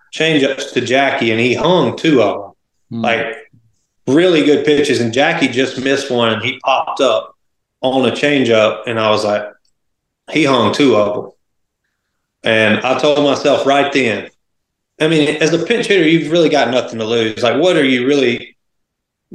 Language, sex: English, male